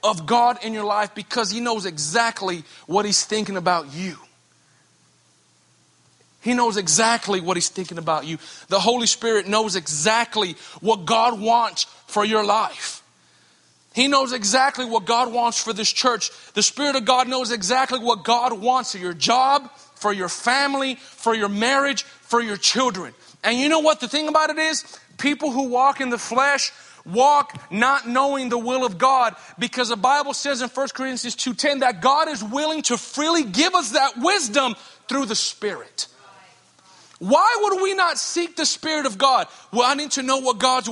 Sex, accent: male, American